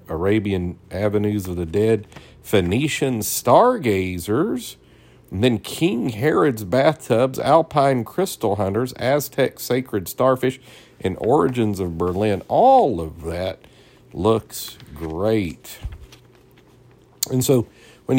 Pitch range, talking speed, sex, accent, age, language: 95-120 Hz, 100 wpm, male, American, 50-69, English